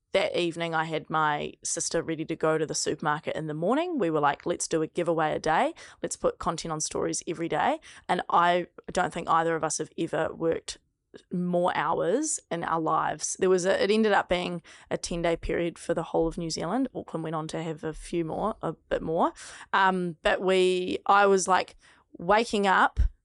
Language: English